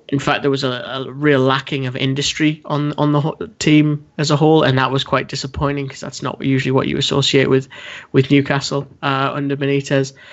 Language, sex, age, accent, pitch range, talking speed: English, male, 20-39, British, 130-145 Hz, 205 wpm